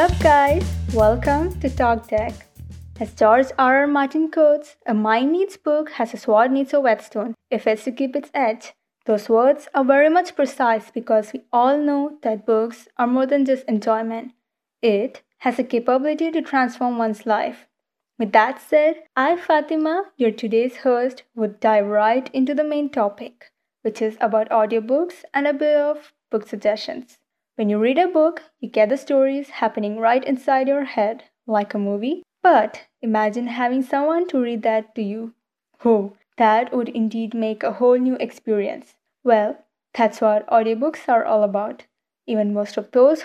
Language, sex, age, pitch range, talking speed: English, female, 20-39, 220-285 Hz, 170 wpm